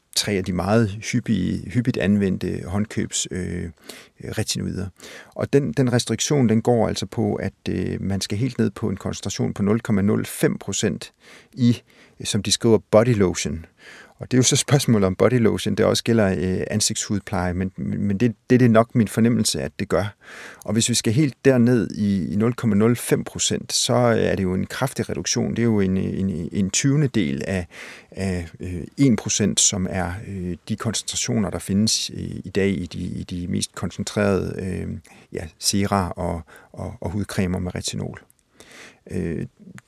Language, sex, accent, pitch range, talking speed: Danish, male, native, 95-110 Hz, 165 wpm